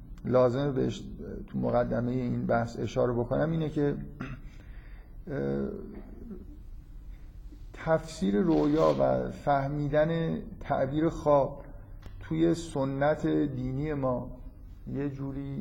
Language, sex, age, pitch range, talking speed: Persian, male, 50-69, 115-145 Hz, 85 wpm